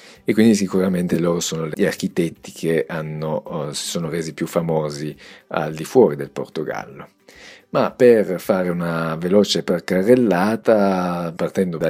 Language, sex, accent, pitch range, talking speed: Italian, male, native, 80-95 Hz, 140 wpm